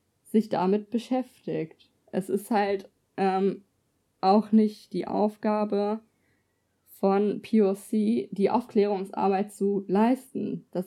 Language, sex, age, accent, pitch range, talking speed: German, female, 20-39, German, 195-225 Hz, 100 wpm